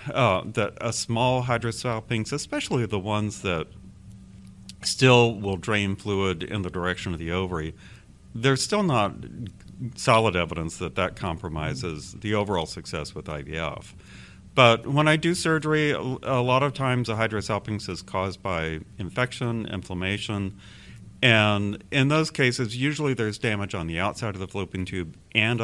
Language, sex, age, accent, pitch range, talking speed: English, male, 50-69, American, 90-120 Hz, 145 wpm